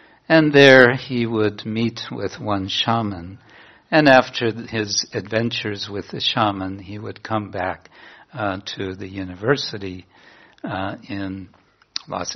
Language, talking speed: English, 125 wpm